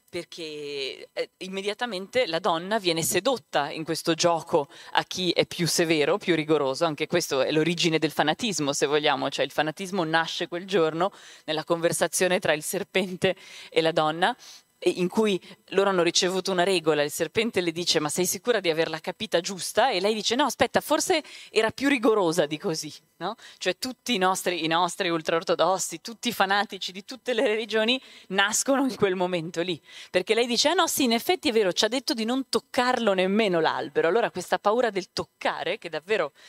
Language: Italian